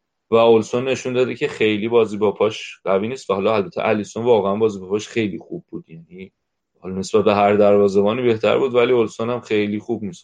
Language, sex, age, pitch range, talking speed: Persian, male, 30-49, 105-135 Hz, 200 wpm